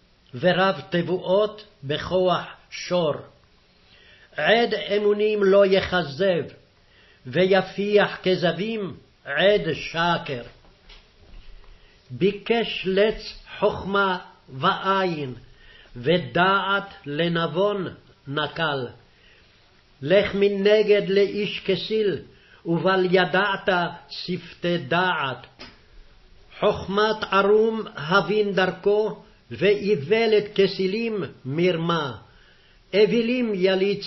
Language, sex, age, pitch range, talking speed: Portuguese, male, 50-69, 165-200 Hz, 60 wpm